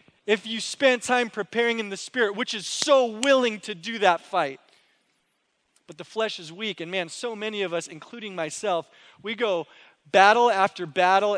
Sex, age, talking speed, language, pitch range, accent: male, 20-39, 180 wpm, English, 180-230 Hz, American